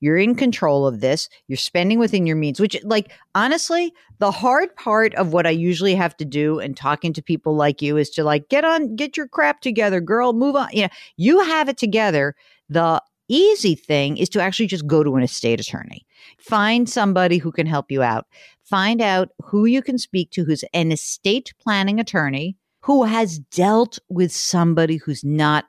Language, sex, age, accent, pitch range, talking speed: English, female, 50-69, American, 155-225 Hz, 200 wpm